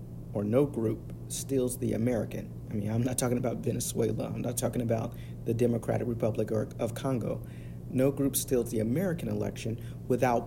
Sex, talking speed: male, 165 wpm